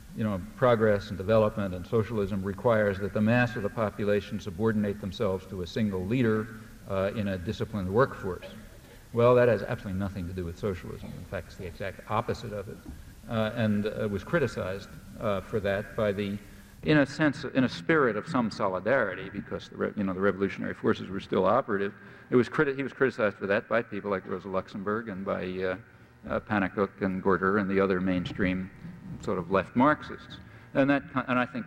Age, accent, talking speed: 60-79, American, 200 wpm